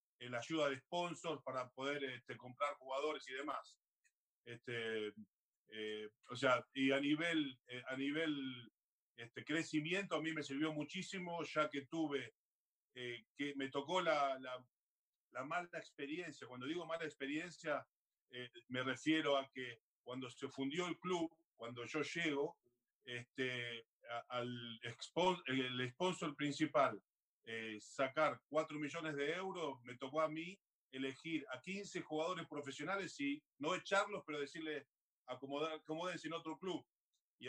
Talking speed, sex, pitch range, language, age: 145 wpm, male, 125-160 Hz, Spanish, 40-59